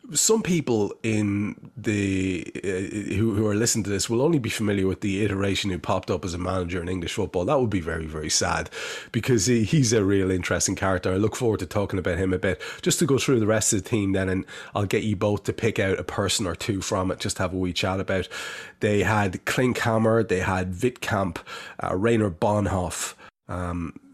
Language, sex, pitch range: English, male, 90-110 Hz